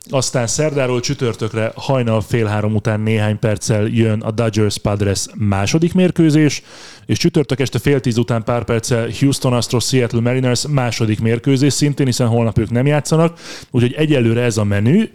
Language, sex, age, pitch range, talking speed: Hungarian, male, 30-49, 110-135 Hz, 160 wpm